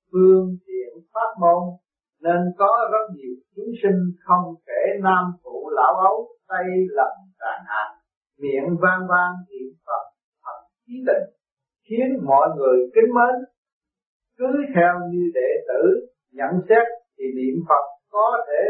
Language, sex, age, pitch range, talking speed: Vietnamese, male, 60-79, 175-260 Hz, 145 wpm